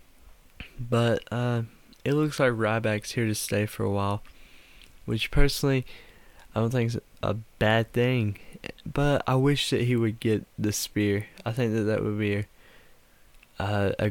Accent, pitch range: American, 105-120 Hz